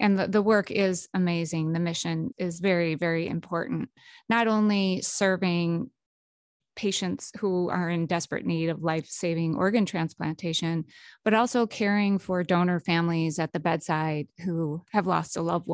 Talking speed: 150 wpm